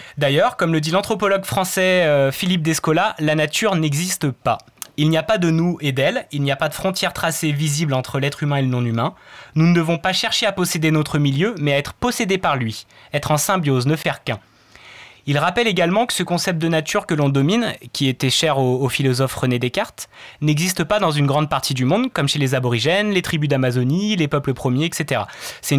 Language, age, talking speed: French, 20-39, 220 wpm